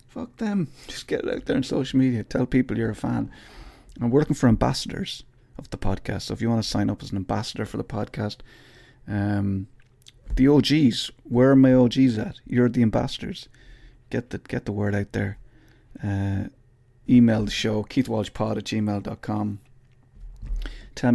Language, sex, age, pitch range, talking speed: English, male, 30-49, 100-125 Hz, 175 wpm